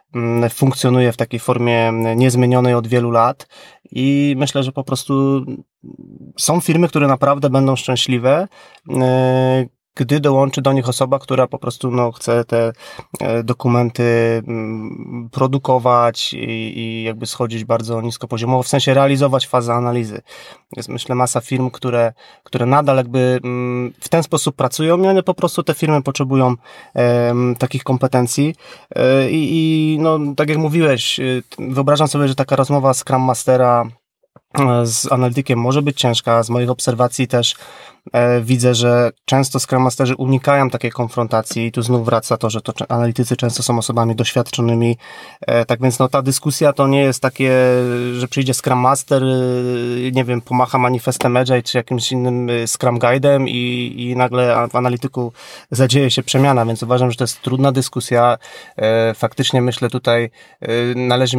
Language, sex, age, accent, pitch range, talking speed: Polish, male, 20-39, native, 120-135 Hz, 145 wpm